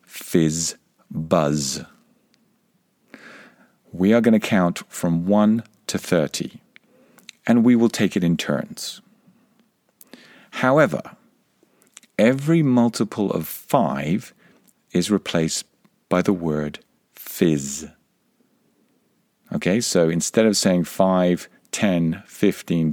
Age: 50-69